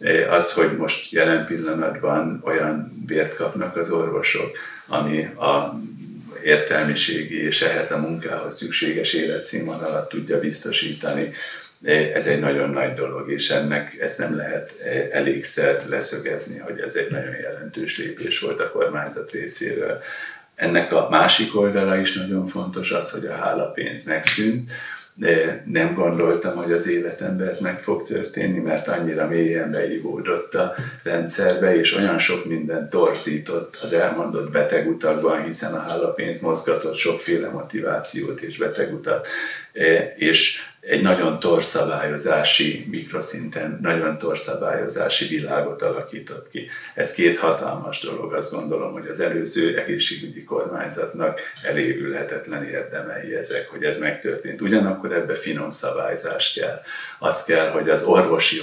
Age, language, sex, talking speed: 50-69, Hungarian, male, 130 wpm